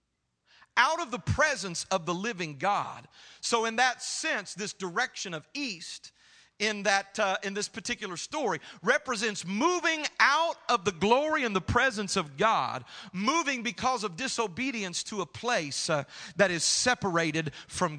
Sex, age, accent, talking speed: male, 40-59, American, 155 wpm